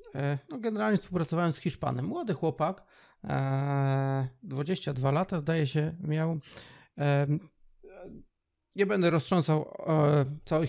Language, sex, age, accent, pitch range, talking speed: Polish, male, 40-59, native, 135-160 Hz, 90 wpm